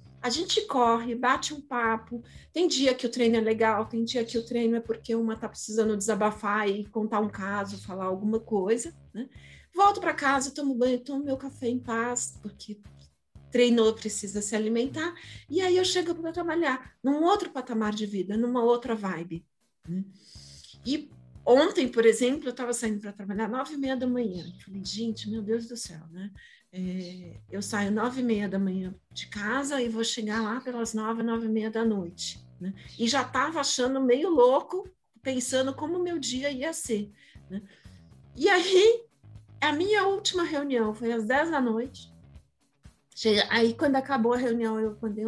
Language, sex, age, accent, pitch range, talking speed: Portuguese, female, 40-59, Brazilian, 210-265 Hz, 180 wpm